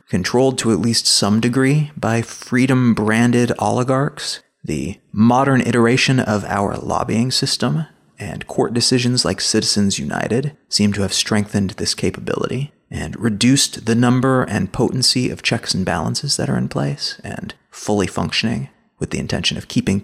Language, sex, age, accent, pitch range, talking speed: English, male, 30-49, American, 105-130 Hz, 150 wpm